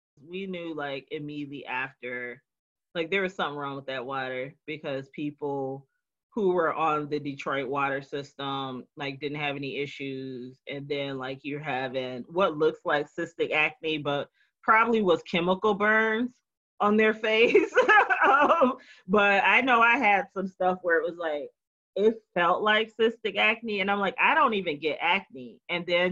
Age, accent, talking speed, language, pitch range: 30-49, American, 165 wpm, English, 140-190 Hz